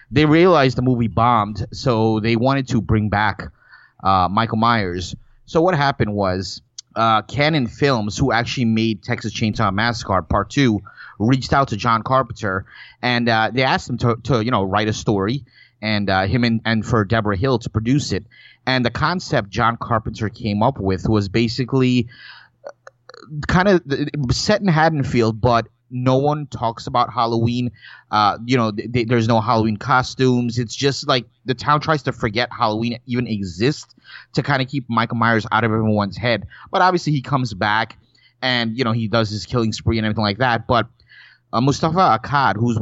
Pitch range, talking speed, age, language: 110-130 Hz, 180 wpm, 30-49, English